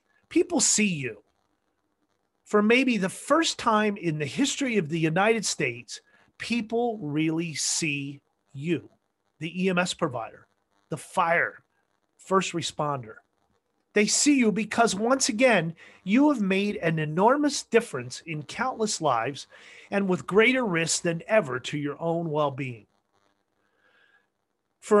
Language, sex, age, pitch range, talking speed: English, male, 40-59, 140-210 Hz, 125 wpm